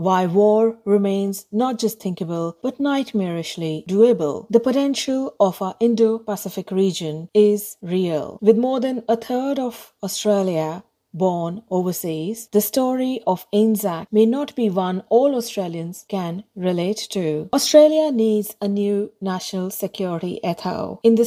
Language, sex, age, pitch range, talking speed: English, female, 40-59, 185-230 Hz, 135 wpm